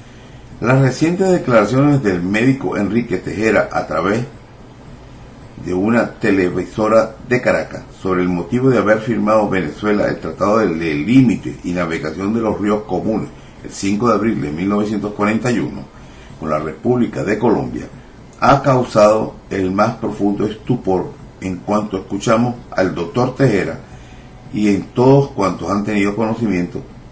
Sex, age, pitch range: male, 50-69, 100-125 Hz